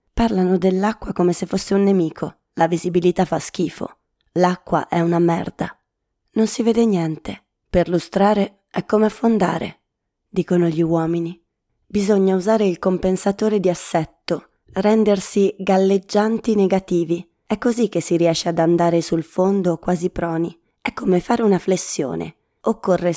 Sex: female